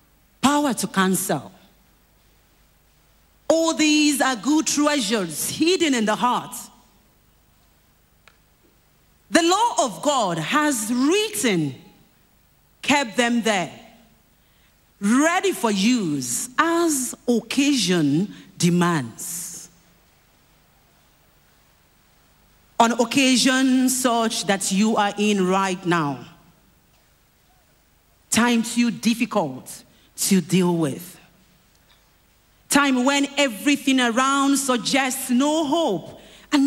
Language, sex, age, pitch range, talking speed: English, female, 40-59, 175-285 Hz, 80 wpm